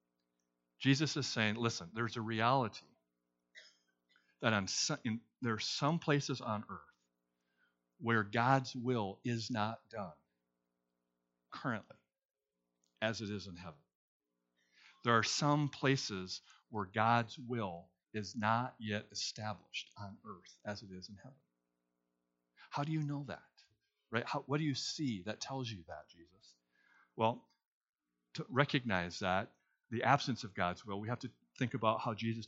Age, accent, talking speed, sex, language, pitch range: 50-69, American, 145 wpm, male, English, 95-125 Hz